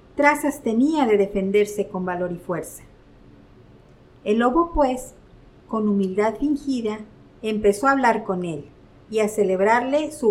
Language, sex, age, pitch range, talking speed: Spanish, female, 50-69, 200-270 Hz, 135 wpm